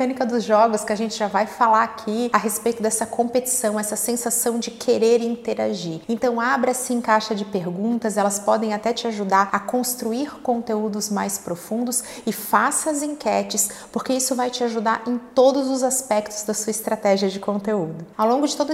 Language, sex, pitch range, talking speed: Portuguese, female, 210-250 Hz, 180 wpm